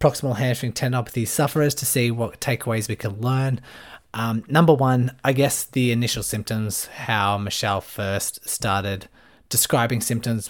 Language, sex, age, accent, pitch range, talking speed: English, male, 20-39, Australian, 105-125 Hz, 145 wpm